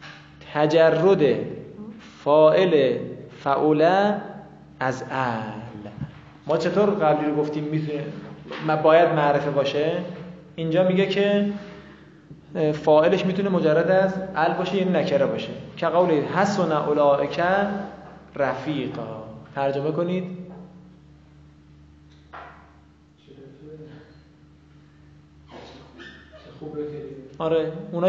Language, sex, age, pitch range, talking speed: Persian, male, 20-39, 105-170 Hz, 80 wpm